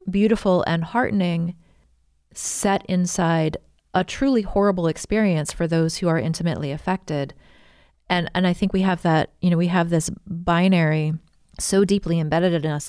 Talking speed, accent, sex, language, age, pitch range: 155 wpm, American, female, English, 30-49, 160-185 Hz